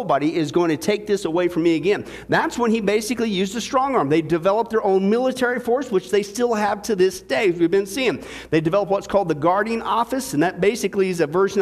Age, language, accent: 50-69, English, American